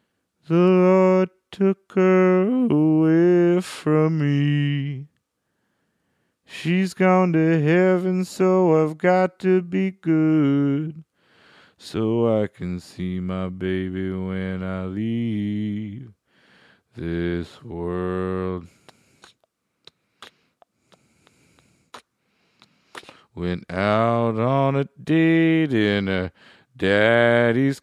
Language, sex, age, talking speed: English, male, 40-59, 80 wpm